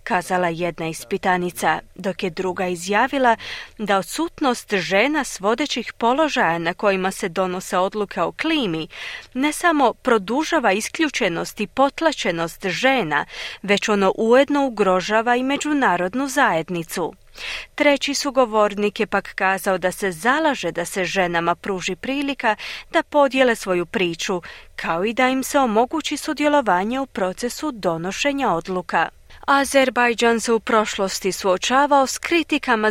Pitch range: 185-265 Hz